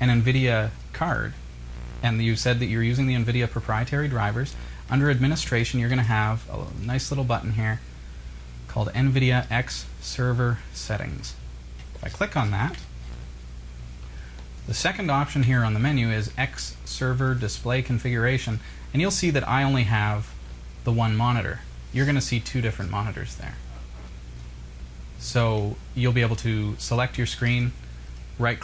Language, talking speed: English, 150 wpm